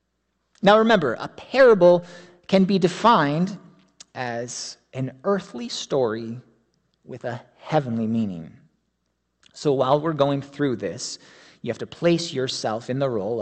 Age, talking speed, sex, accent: 30-49, 130 wpm, male, American